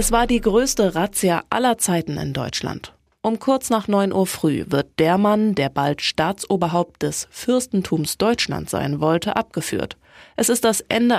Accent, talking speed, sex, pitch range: German, 165 wpm, female, 160-210 Hz